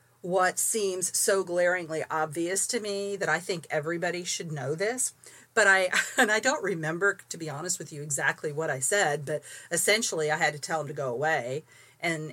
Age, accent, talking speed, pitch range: 40-59, American, 195 wpm, 150-190 Hz